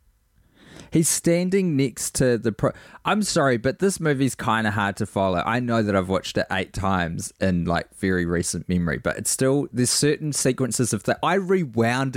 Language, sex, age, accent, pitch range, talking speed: English, male, 20-39, Australian, 100-135 Hz, 190 wpm